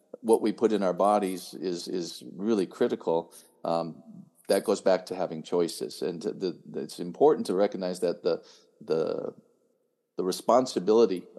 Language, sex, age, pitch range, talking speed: English, male, 50-69, 85-105 Hz, 155 wpm